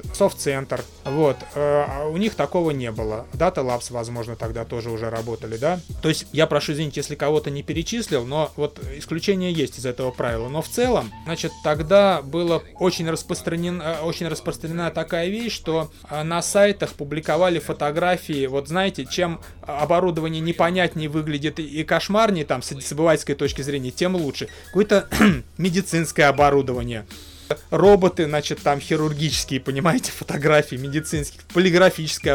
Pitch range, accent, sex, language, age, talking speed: 140-170 Hz, native, male, Russian, 30-49, 140 wpm